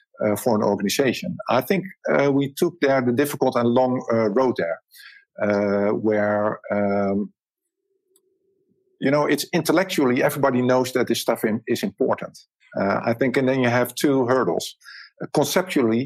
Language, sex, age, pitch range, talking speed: English, male, 50-69, 105-130 Hz, 165 wpm